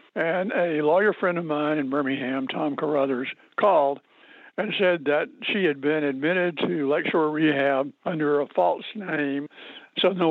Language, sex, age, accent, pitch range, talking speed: English, male, 60-79, American, 140-165 Hz, 155 wpm